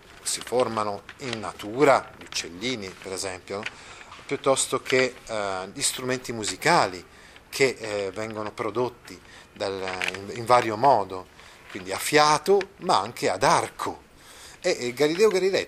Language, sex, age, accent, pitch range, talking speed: Italian, male, 40-59, native, 100-150 Hz, 135 wpm